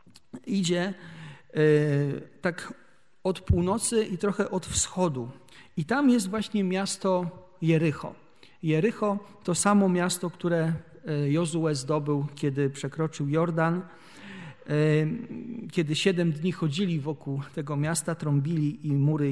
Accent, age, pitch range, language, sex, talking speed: native, 40-59, 150-195 Hz, Polish, male, 105 wpm